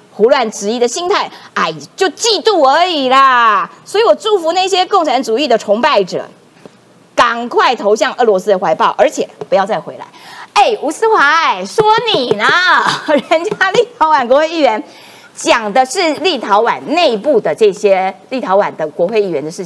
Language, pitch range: Chinese, 235-370 Hz